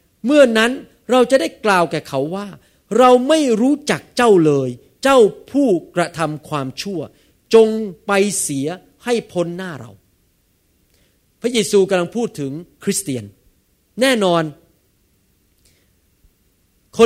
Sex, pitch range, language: male, 150-235 Hz, Thai